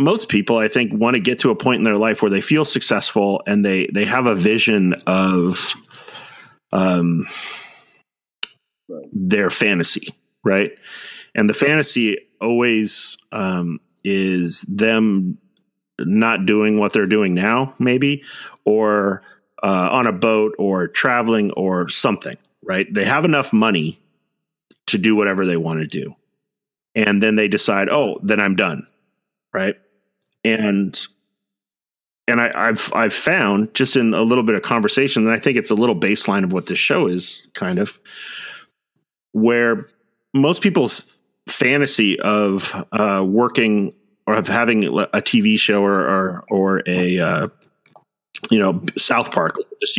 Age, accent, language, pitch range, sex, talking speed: 40-59, American, English, 95-115 Hz, male, 150 wpm